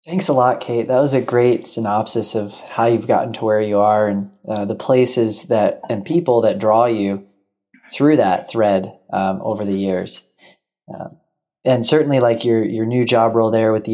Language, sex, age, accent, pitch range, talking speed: English, male, 30-49, American, 100-115 Hz, 200 wpm